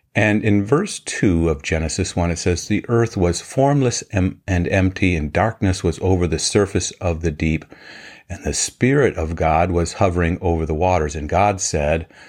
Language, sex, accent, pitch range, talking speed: English, male, American, 85-105 Hz, 180 wpm